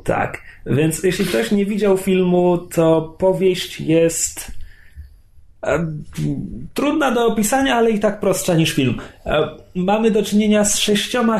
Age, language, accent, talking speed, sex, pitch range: 30-49, Polish, native, 125 wpm, male, 110-170 Hz